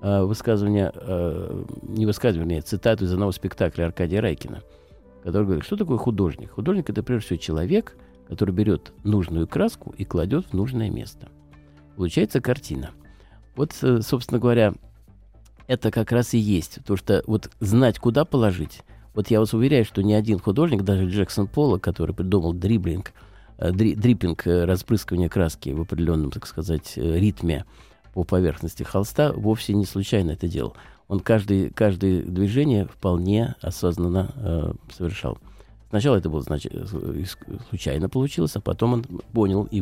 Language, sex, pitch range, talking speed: Russian, male, 85-110 Hz, 145 wpm